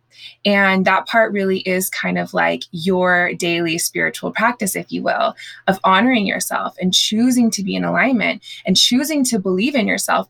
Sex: female